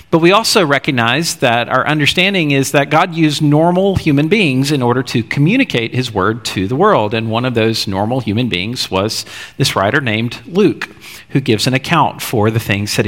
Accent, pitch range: American, 110-160 Hz